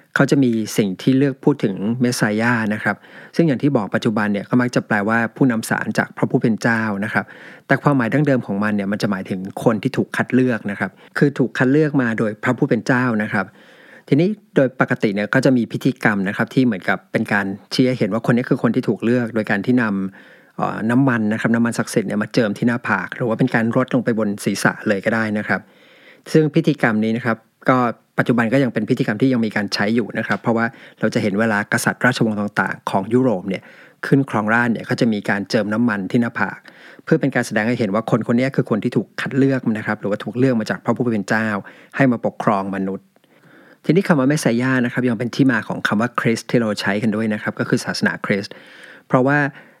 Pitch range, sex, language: 105-130 Hz, male, English